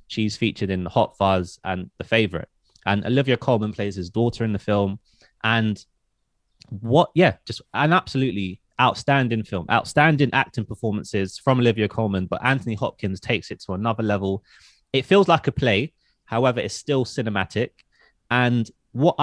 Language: English